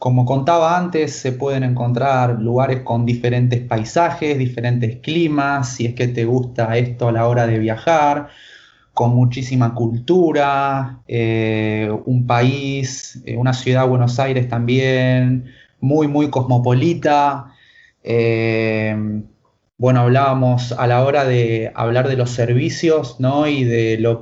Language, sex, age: English, male, 20-39